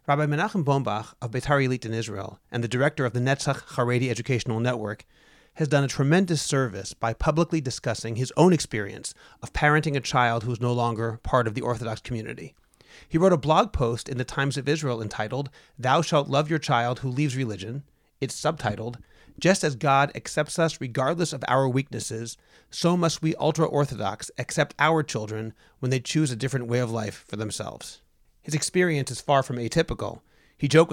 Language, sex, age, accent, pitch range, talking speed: English, male, 30-49, American, 120-150 Hz, 185 wpm